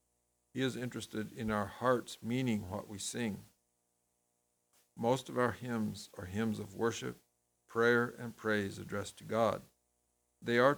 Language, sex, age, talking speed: English, male, 60-79, 145 wpm